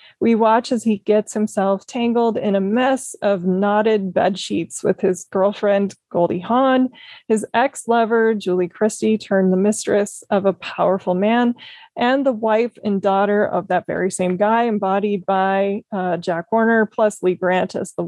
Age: 20-39